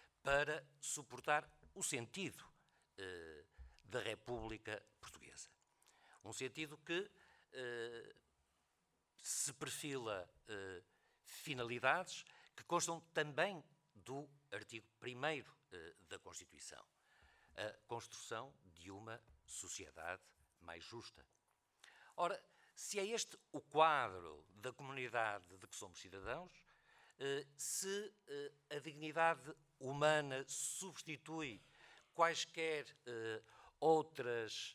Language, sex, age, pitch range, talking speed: Portuguese, male, 50-69, 115-160 Hz, 95 wpm